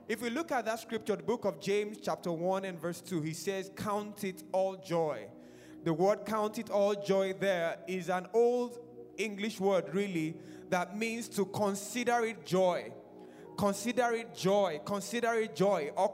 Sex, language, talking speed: male, English, 175 wpm